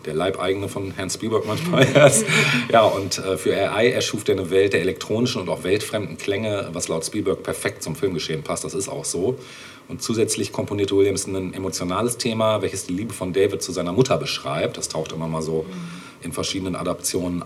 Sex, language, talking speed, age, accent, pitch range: male, German, 195 wpm, 40-59, German, 90-130 Hz